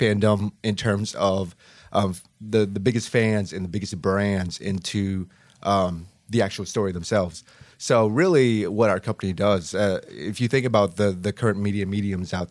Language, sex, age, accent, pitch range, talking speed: English, male, 30-49, American, 95-110 Hz, 175 wpm